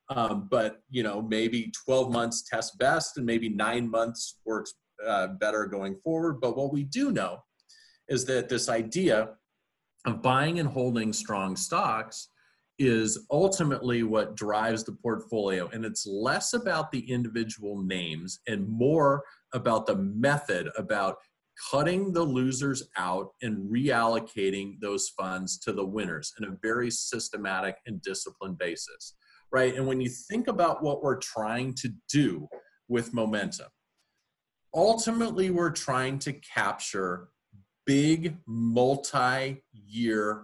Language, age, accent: English, 40-59, American